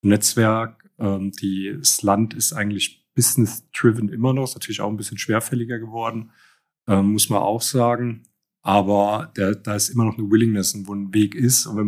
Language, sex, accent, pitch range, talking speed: German, male, German, 100-115 Hz, 180 wpm